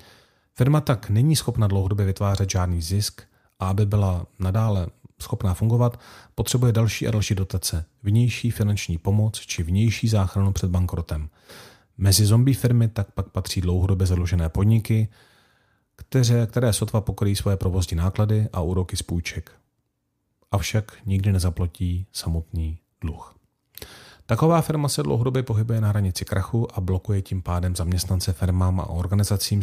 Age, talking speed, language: 40-59, 140 wpm, Czech